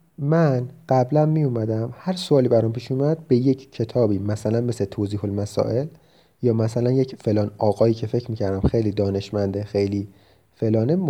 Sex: male